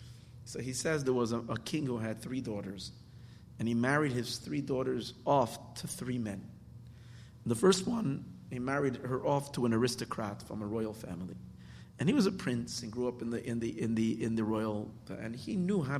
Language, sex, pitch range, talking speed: English, male, 110-130 Hz, 205 wpm